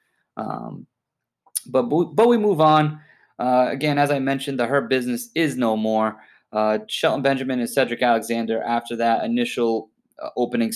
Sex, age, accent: male, 20-39, American